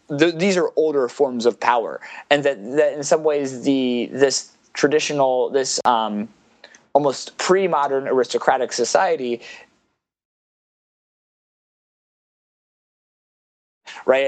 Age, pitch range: 20-39, 120-160 Hz